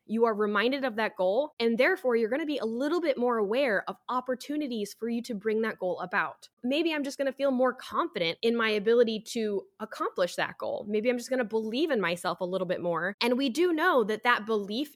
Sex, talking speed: female, 230 wpm